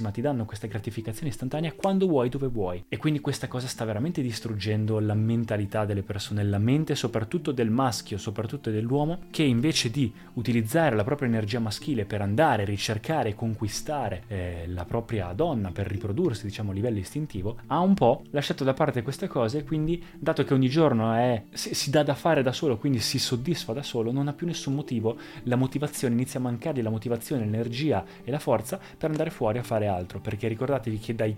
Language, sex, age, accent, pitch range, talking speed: Italian, male, 20-39, native, 110-145 Hz, 195 wpm